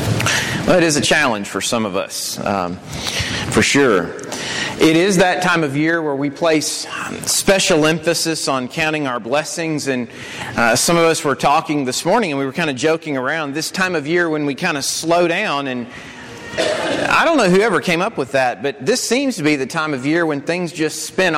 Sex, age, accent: male, 40-59, American